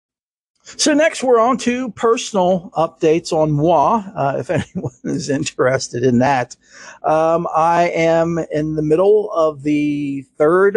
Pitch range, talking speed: 125-155 Hz, 140 wpm